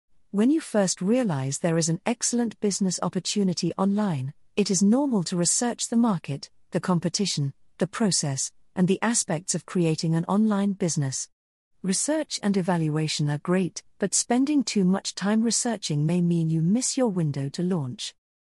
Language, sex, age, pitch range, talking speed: English, female, 40-59, 155-215 Hz, 160 wpm